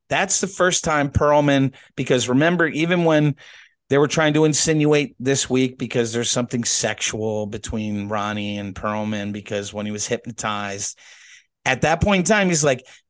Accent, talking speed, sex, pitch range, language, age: American, 165 wpm, male, 120-180 Hz, English, 40-59